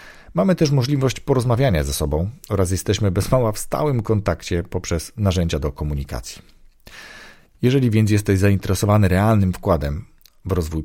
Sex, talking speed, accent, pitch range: male, 140 wpm, native, 80-110 Hz